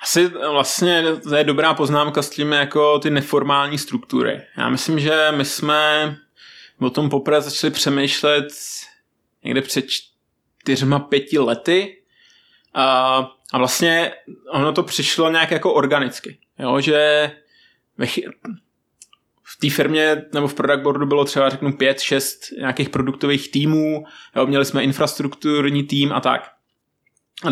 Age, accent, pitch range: 20-39, native, 135-150 Hz